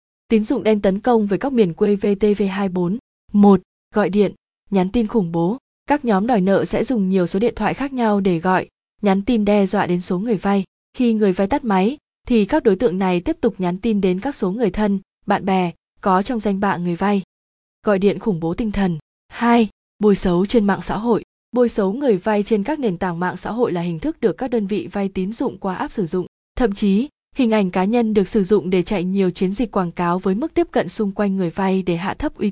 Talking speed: 245 wpm